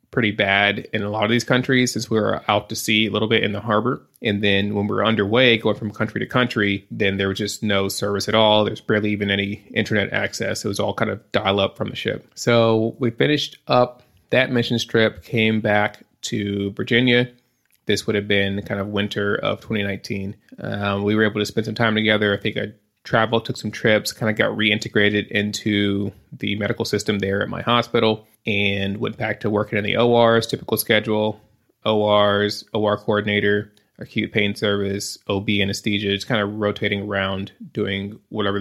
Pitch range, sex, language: 100-115 Hz, male, English